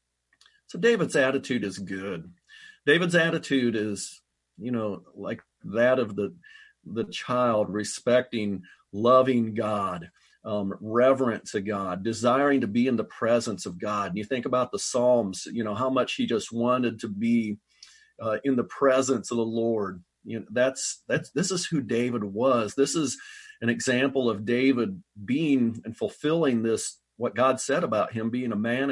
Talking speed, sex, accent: 165 wpm, male, American